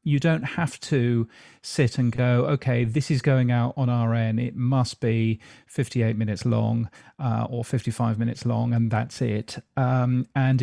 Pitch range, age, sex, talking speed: 115-135 Hz, 40-59, male, 170 wpm